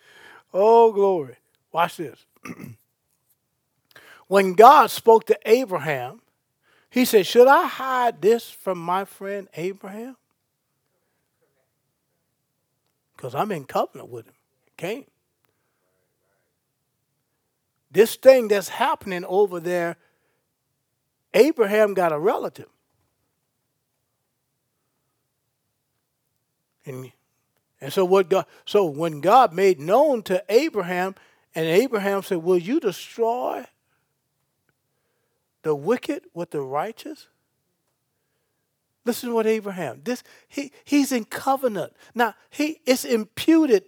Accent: American